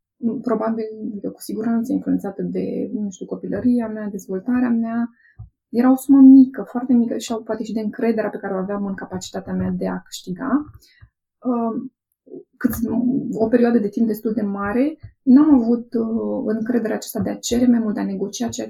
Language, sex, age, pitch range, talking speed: Romanian, female, 20-39, 200-245 Hz, 175 wpm